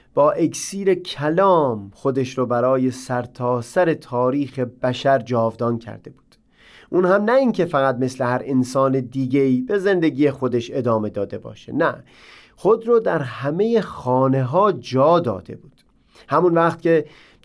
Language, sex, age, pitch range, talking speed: Persian, male, 30-49, 130-170 Hz, 145 wpm